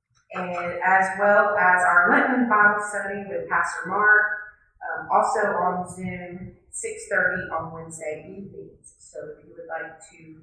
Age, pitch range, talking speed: 30-49, 165-250 Hz, 145 wpm